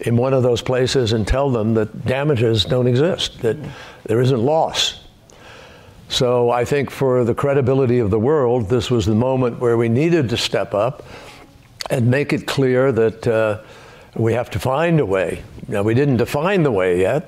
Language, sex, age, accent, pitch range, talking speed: English, male, 60-79, American, 115-145 Hz, 190 wpm